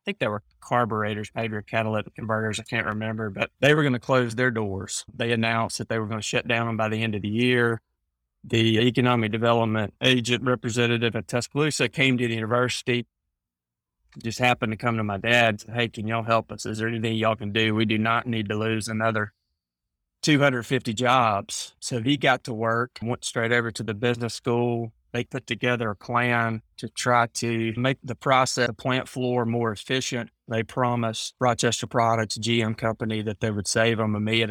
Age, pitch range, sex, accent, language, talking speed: 30-49, 110-125 Hz, male, American, English, 200 wpm